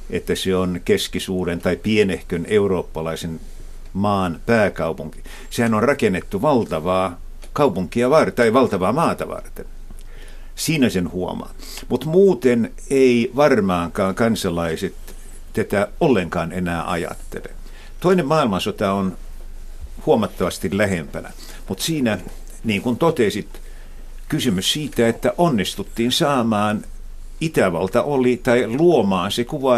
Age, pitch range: 60-79, 95-130 Hz